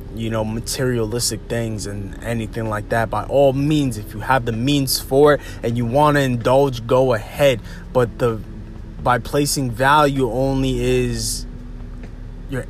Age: 20-39